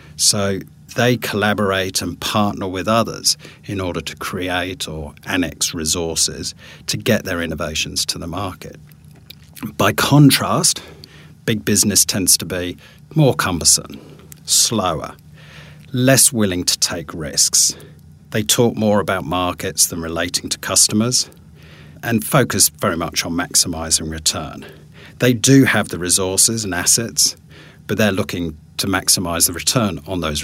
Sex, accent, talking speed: male, British, 135 wpm